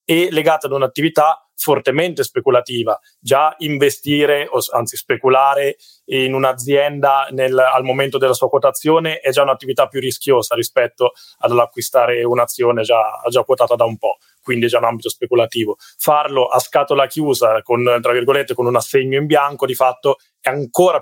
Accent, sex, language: native, male, Italian